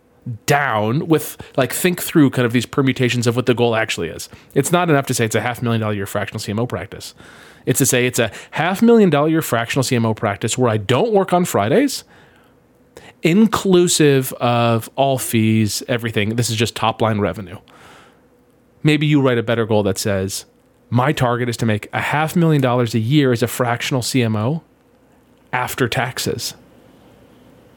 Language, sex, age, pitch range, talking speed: English, male, 30-49, 120-155 Hz, 180 wpm